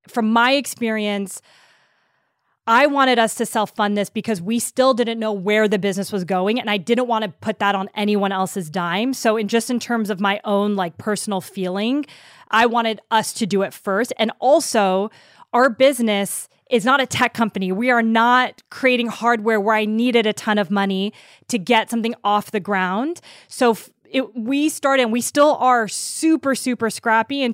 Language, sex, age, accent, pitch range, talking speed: English, female, 20-39, American, 205-240 Hz, 185 wpm